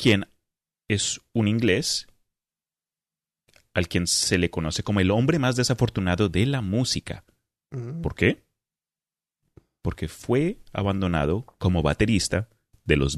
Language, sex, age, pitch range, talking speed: Spanish, male, 30-49, 90-115 Hz, 120 wpm